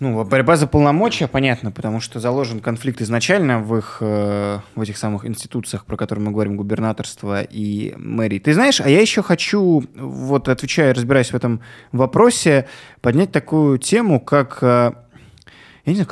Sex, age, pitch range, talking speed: male, 20-39, 110-150 Hz, 160 wpm